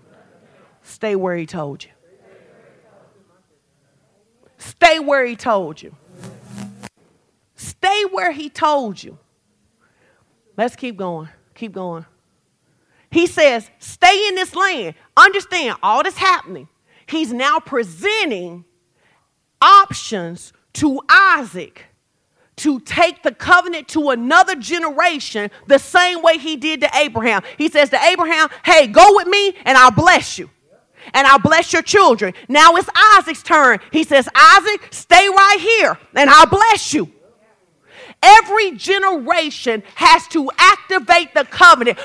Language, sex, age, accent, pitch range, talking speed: English, female, 40-59, American, 245-360 Hz, 125 wpm